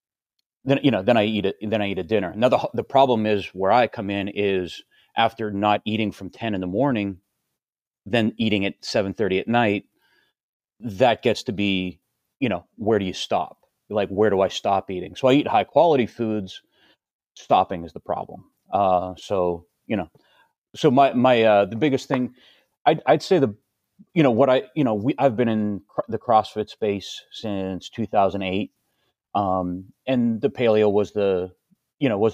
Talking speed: 190 wpm